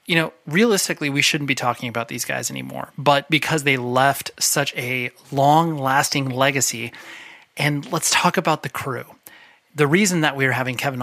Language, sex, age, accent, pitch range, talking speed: English, male, 30-49, American, 125-150 Hz, 170 wpm